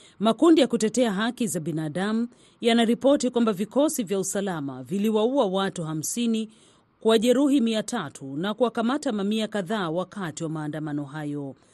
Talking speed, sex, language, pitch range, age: 130 wpm, female, Swahili, 175-230 Hz, 40-59